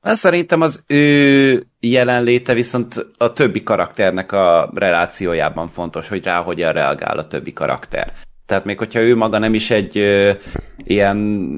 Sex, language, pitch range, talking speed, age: male, Hungarian, 95-120 Hz, 145 wpm, 30-49